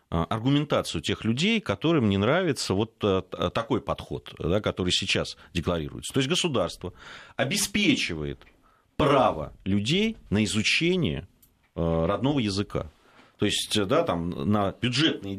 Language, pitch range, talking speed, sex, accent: Russian, 85-120 Hz, 115 wpm, male, native